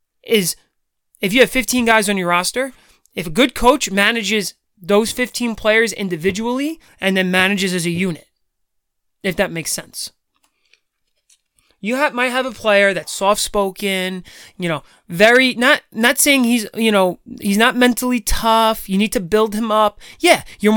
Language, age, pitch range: English, 30-49, 180-225 Hz